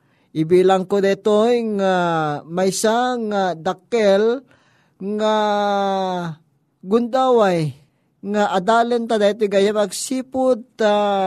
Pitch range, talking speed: 175-230 Hz, 75 wpm